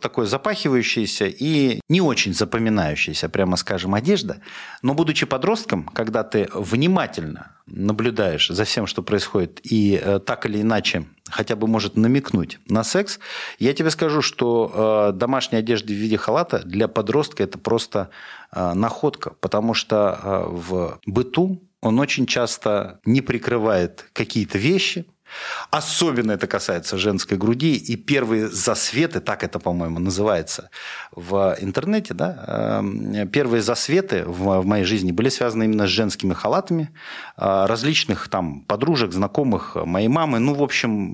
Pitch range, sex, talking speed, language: 100-130 Hz, male, 135 wpm, Russian